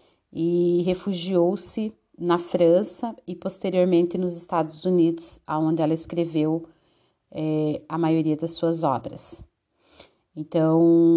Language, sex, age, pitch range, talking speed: Portuguese, female, 40-59, 160-185 Hz, 100 wpm